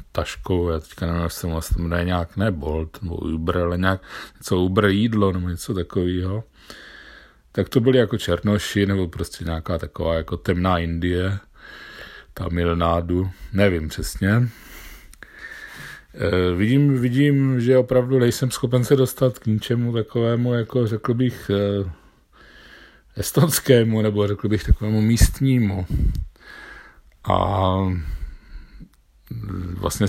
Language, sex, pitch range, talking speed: Czech, male, 90-110 Hz, 120 wpm